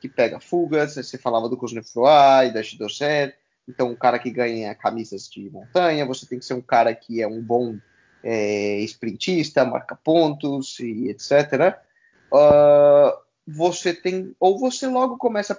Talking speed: 160 wpm